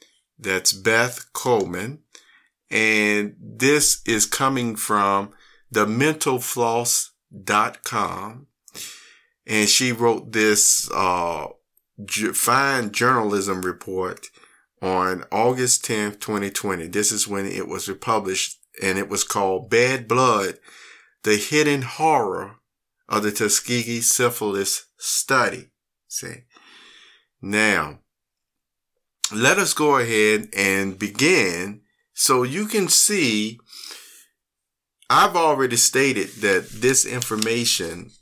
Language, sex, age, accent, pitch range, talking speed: English, male, 50-69, American, 105-125 Hz, 95 wpm